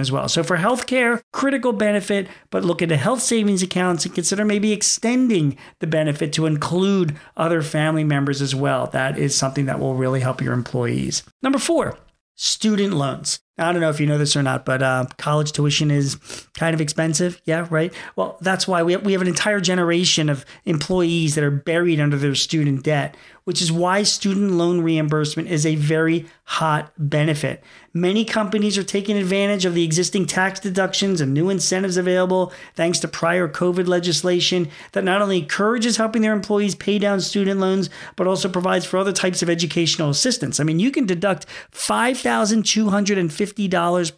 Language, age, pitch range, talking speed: English, 40-59, 155-195 Hz, 180 wpm